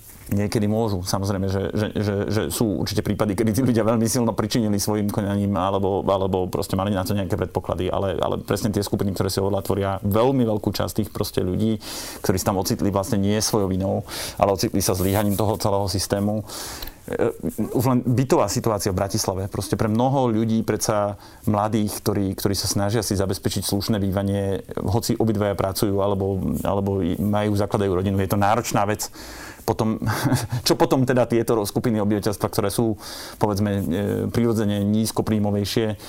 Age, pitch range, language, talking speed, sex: 30-49, 100-115 Hz, Slovak, 165 wpm, male